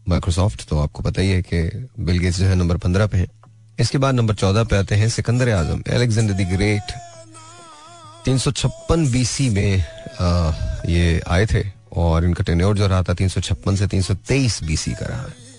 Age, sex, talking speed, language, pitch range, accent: 30-49, male, 50 wpm, Hindi, 95-115 Hz, native